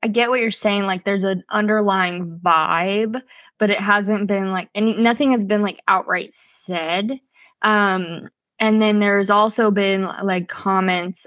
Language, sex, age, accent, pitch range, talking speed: English, female, 20-39, American, 180-215 Hz, 155 wpm